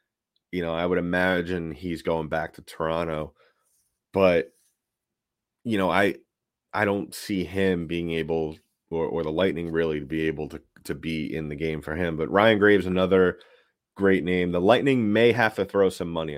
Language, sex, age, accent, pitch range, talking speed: English, male, 30-49, American, 80-95 Hz, 185 wpm